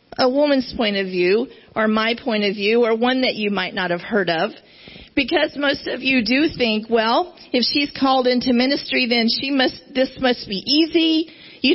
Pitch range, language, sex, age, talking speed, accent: 230-295 Hz, English, female, 40-59, 200 wpm, American